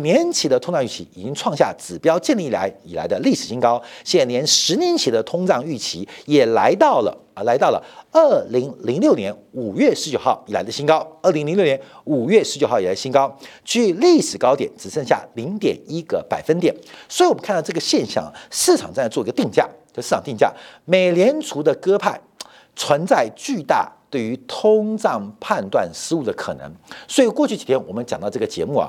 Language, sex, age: Chinese, male, 50-69